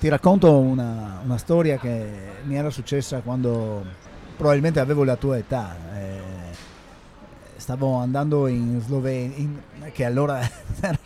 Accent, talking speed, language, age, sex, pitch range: native, 130 wpm, Italian, 30-49, male, 110-145 Hz